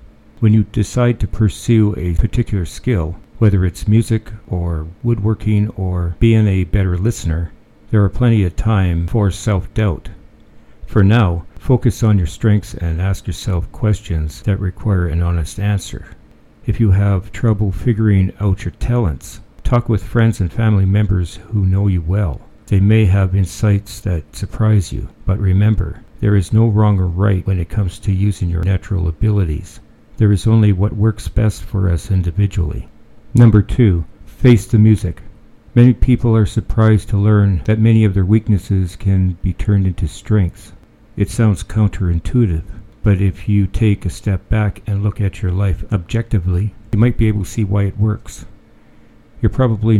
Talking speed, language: 165 wpm, English